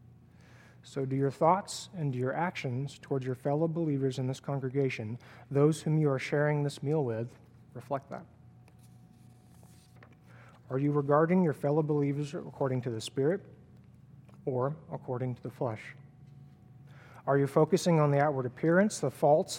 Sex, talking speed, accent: male, 145 wpm, American